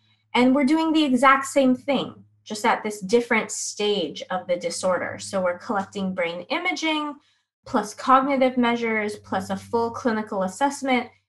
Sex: female